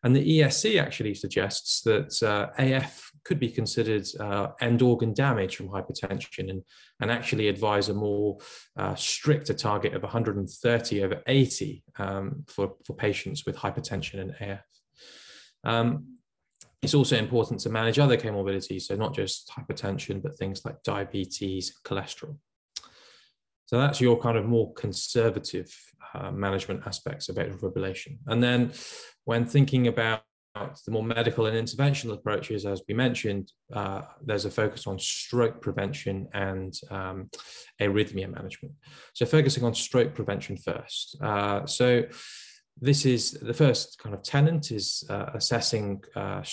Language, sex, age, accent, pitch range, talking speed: English, male, 20-39, British, 100-130 Hz, 145 wpm